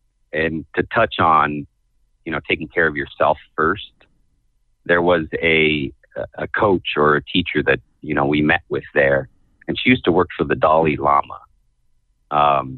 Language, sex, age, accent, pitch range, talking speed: English, male, 30-49, American, 75-85 Hz, 170 wpm